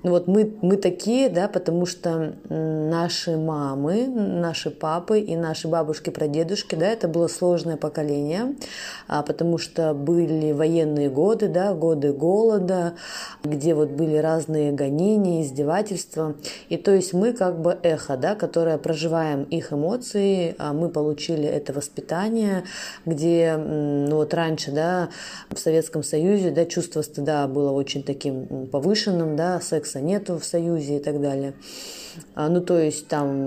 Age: 20-39